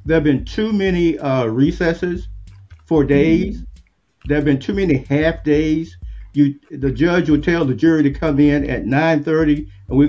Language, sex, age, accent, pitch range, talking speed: English, male, 50-69, American, 130-160 Hz, 180 wpm